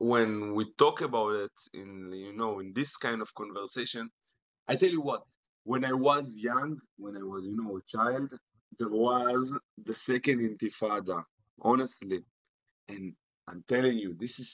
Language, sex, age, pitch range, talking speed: English, male, 30-49, 110-150 Hz, 165 wpm